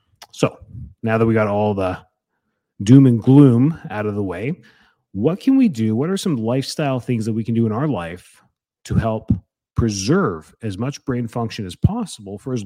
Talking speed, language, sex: 195 wpm, English, male